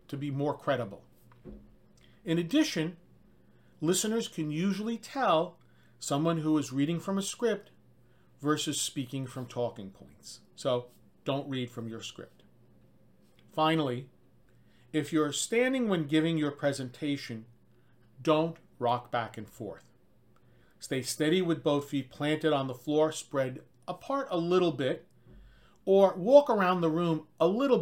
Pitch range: 125-175 Hz